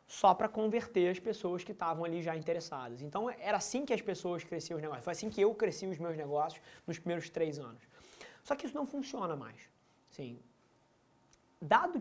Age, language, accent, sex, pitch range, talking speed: 20-39, Portuguese, Brazilian, male, 160-195 Hz, 195 wpm